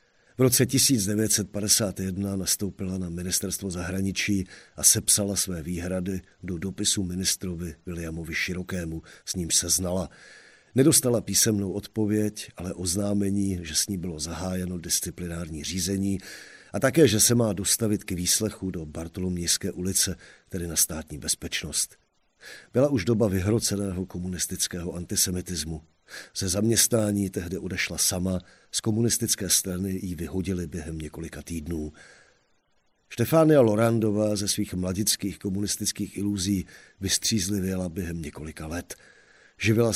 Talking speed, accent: 115 wpm, native